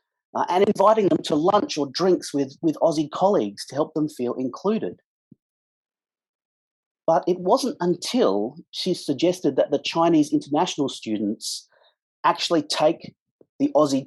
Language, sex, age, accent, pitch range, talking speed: English, male, 30-49, Australian, 130-215 Hz, 135 wpm